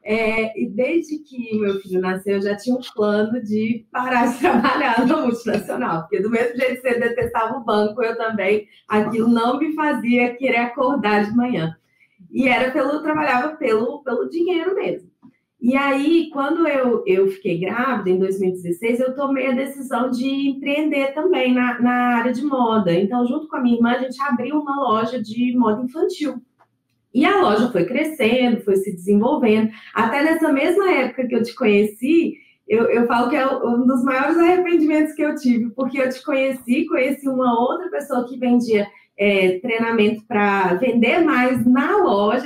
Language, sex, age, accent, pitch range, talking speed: Portuguese, female, 20-39, Brazilian, 225-280 Hz, 180 wpm